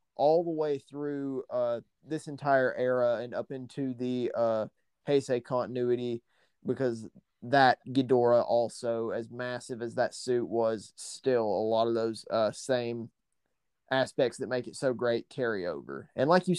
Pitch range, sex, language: 125-155 Hz, male, English